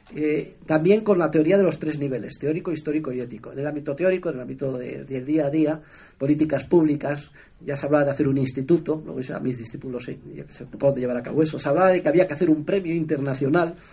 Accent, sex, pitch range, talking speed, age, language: Spanish, male, 145-185 Hz, 235 wpm, 40-59, Spanish